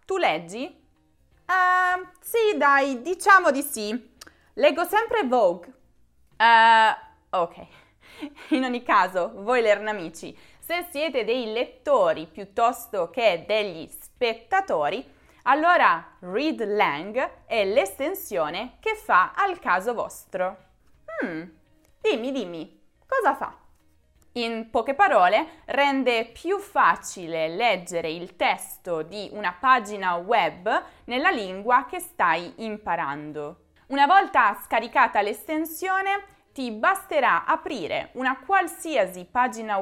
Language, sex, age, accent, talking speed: Italian, female, 20-39, native, 105 wpm